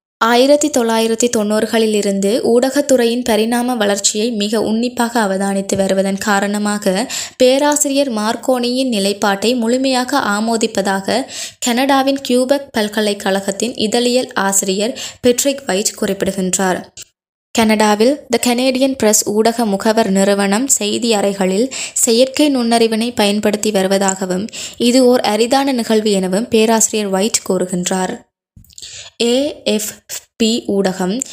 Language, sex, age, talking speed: Tamil, female, 20-39, 90 wpm